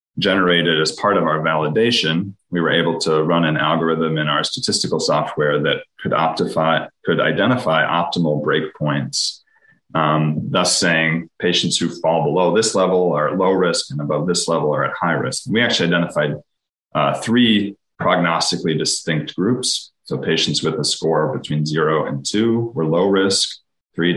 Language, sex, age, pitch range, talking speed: English, male, 30-49, 80-90 Hz, 160 wpm